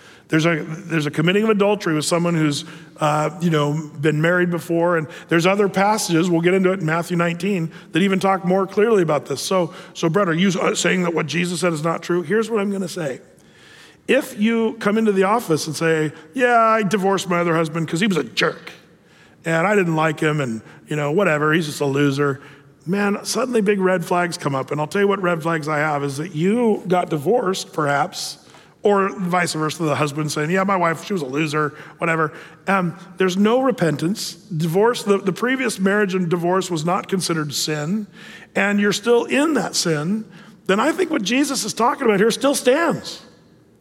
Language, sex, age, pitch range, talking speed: English, male, 40-59, 160-205 Hz, 210 wpm